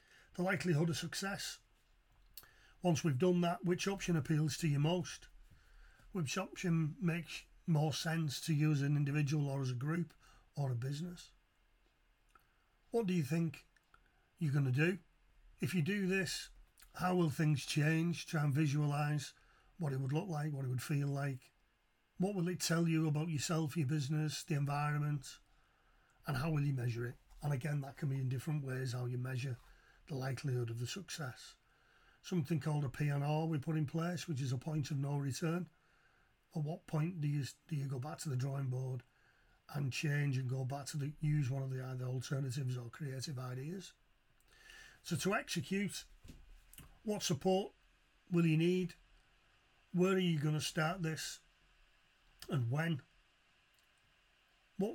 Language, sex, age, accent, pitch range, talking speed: English, male, 40-59, British, 140-170 Hz, 170 wpm